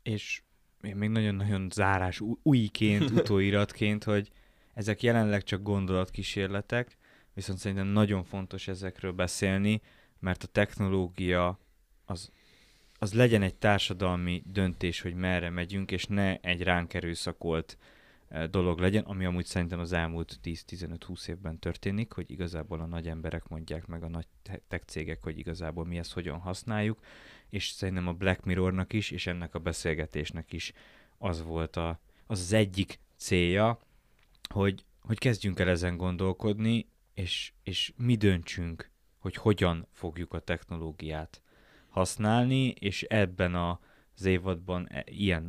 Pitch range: 85-100 Hz